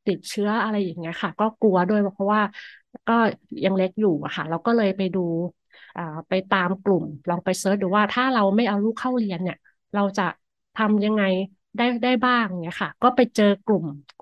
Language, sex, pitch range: Thai, female, 185-235 Hz